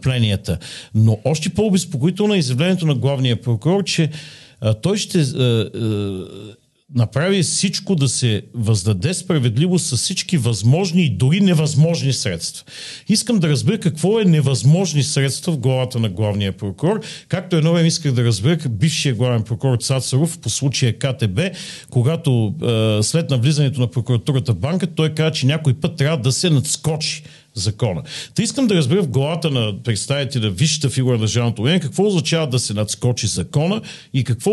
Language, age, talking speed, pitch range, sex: Bulgarian, 50-69, 160 wpm, 120-170 Hz, male